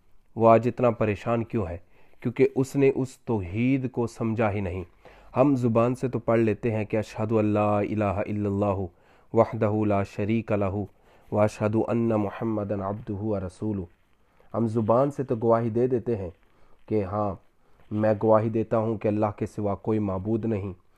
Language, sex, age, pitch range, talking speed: Urdu, male, 30-49, 100-115 Hz, 165 wpm